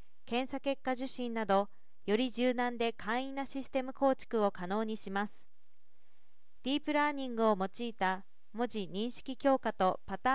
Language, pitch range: Japanese, 205-265 Hz